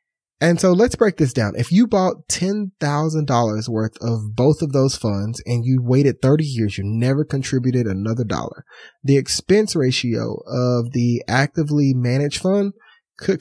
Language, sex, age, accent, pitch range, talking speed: English, male, 30-49, American, 115-155 Hz, 155 wpm